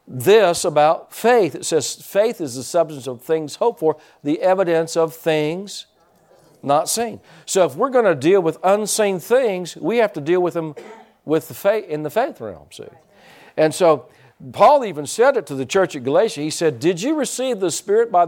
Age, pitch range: 50-69, 145-180 Hz